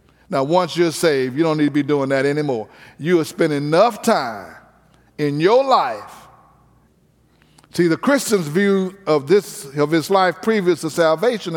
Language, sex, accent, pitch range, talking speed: English, male, American, 160-205 Hz, 165 wpm